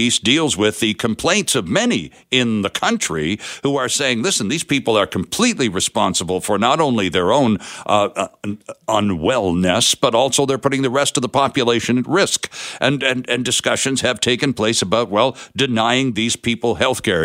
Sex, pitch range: male, 110-140 Hz